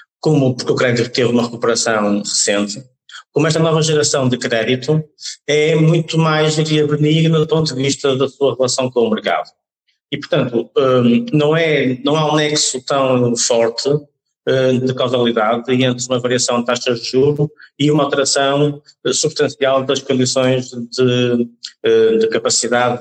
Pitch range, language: 120-150 Hz, Portuguese